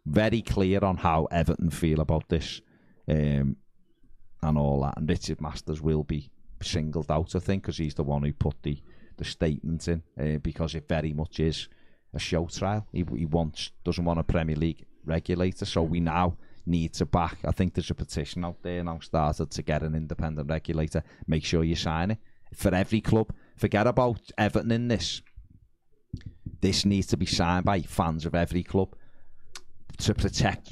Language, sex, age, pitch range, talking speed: English, male, 30-49, 80-100 Hz, 185 wpm